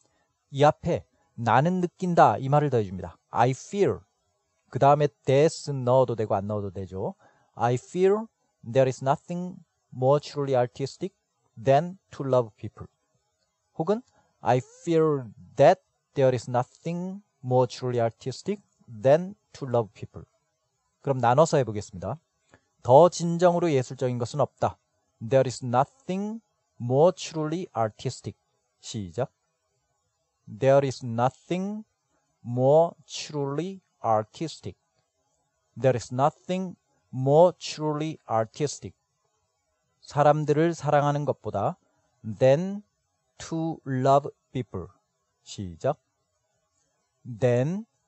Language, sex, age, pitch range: Korean, male, 40-59, 120-160 Hz